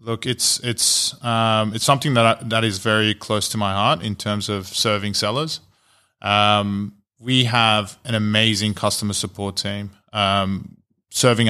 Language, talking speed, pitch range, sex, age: English, 155 wpm, 100-115 Hz, male, 20-39